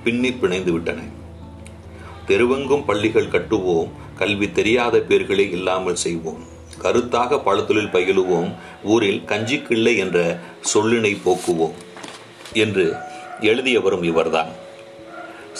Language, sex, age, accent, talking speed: Tamil, male, 40-59, native, 85 wpm